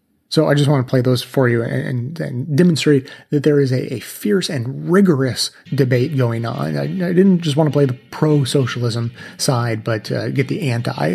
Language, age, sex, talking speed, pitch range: English, 30-49, male, 210 wpm, 130-155 Hz